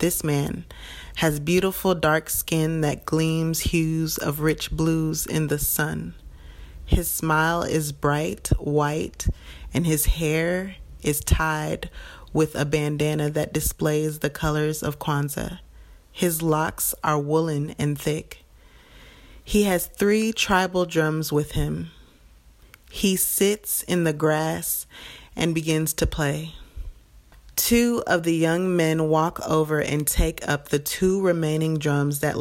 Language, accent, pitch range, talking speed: English, American, 150-170 Hz, 130 wpm